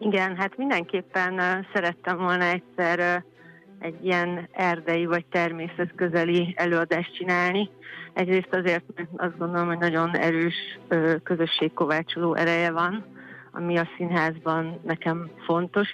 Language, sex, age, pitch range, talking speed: Hungarian, female, 30-49, 160-175 Hz, 110 wpm